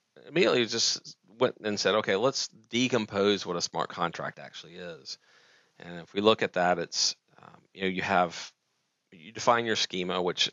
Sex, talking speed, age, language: male, 175 wpm, 40-59, English